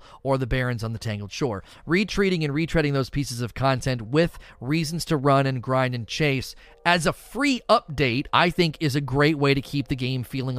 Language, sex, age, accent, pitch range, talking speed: English, male, 30-49, American, 125-150 Hz, 210 wpm